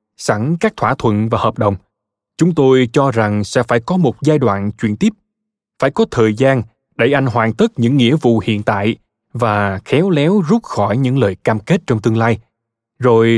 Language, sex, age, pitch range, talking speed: Vietnamese, male, 20-39, 110-160 Hz, 200 wpm